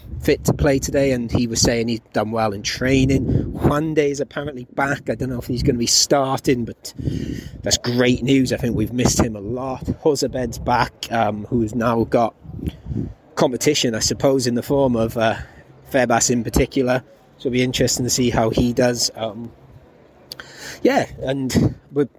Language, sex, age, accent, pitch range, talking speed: English, male, 30-49, British, 115-135 Hz, 185 wpm